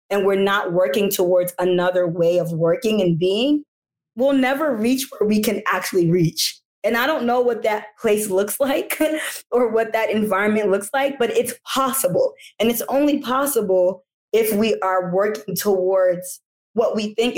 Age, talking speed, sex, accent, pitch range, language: 20-39, 170 wpm, female, American, 180-235 Hz, English